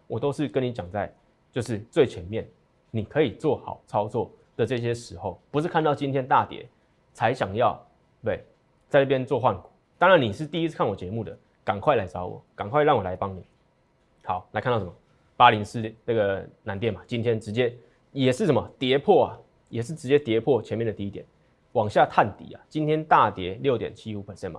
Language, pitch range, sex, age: Chinese, 105-145 Hz, male, 20-39